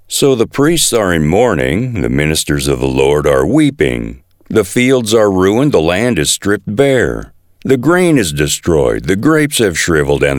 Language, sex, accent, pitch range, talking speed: English, male, American, 85-135 Hz, 180 wpm